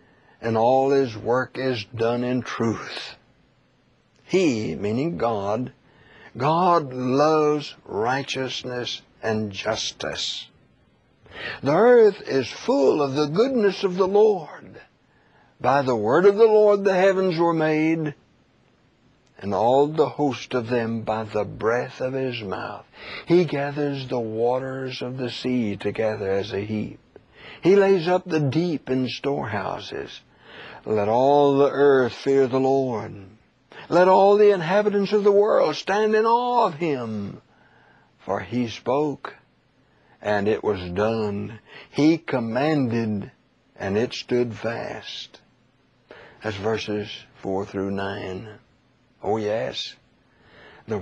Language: English